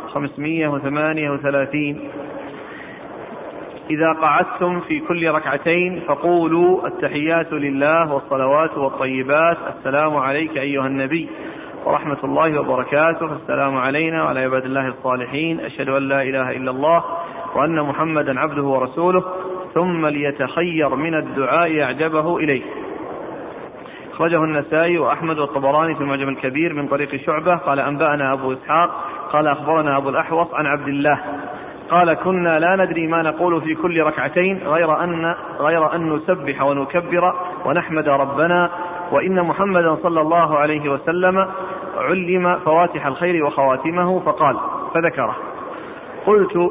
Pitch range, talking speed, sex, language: 145-170 Hz, 115 wpm, male, Arabic